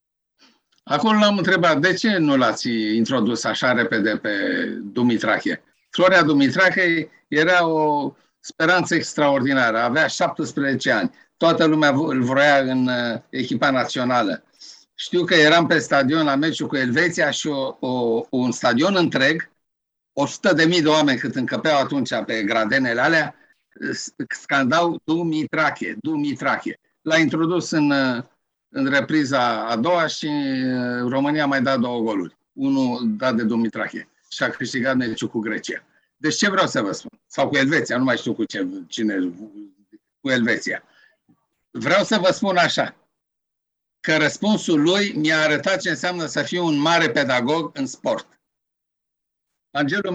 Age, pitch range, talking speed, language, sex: 50-69, 130-175 Hz, 140 wpm, Romanian, male